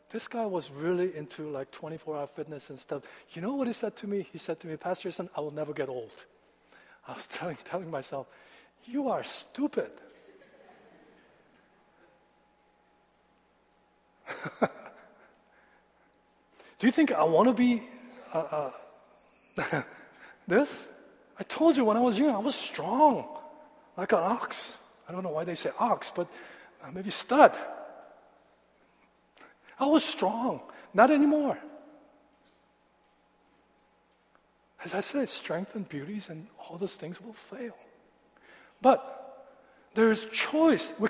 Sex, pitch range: male, 175-295 Hz